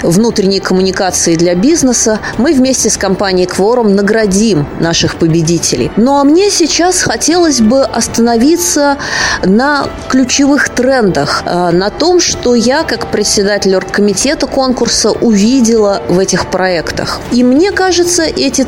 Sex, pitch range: female, 200-280 Hz